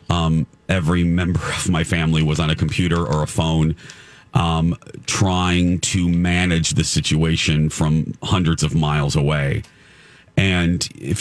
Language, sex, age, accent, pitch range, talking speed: English, male, 40-59, American, 80-100 Hz, 140 wpm